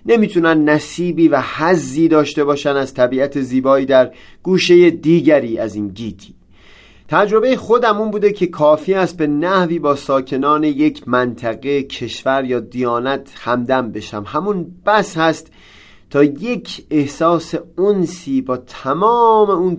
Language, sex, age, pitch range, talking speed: Persian, male, 30-49, 130-180 Hz, 130 wpm